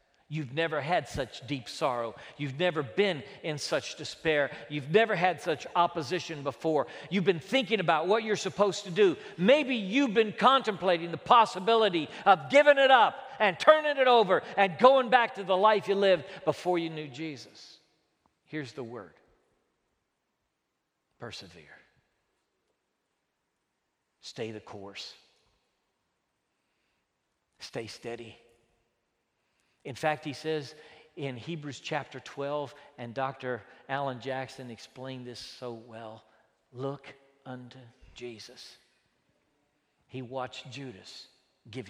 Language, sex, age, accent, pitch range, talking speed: English, male, 50-69, American, 130-205 Hz, 120 wpm